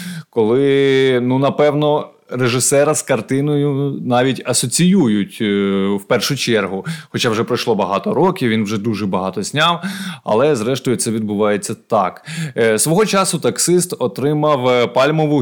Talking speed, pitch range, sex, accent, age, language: 120 wpm, 115-155 Hz, male, native, 20-39, Ukrainian